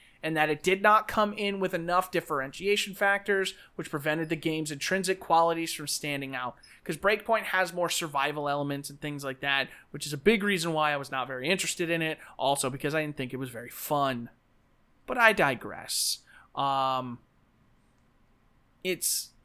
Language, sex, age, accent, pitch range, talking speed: English, male, 30-49, American, 140-180 Hz, 175 wpm